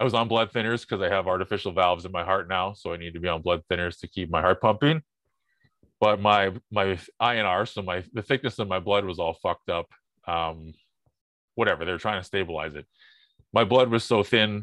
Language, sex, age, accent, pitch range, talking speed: English, male, 30-49, American, 90-115 Hz, 220 wpm